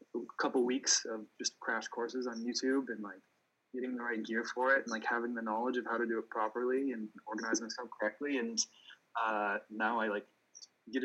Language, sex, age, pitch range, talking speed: English, male, 20-39, 115-130 Hz, 200 wpm